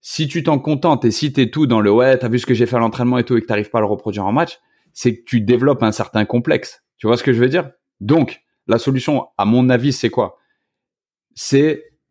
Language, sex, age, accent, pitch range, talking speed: French, male, 30-49, French, 110-145 Hz, 265 wpm